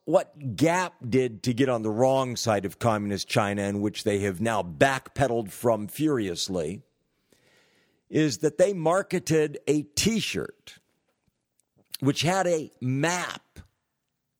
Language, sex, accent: English, male, American